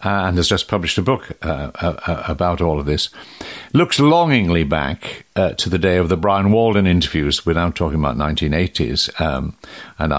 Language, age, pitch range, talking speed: English, 60-79, 80-105 Hz, 185 wpm